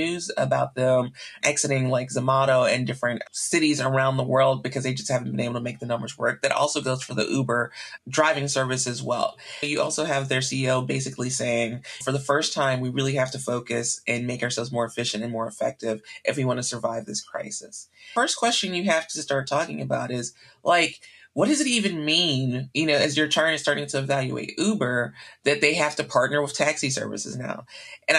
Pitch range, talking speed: 125-145 Hz, 210 wpm